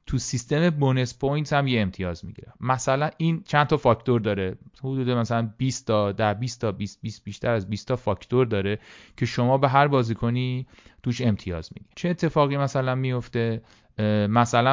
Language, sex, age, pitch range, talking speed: Persian, male, 30-49, 105-130 Hz, 165 wpm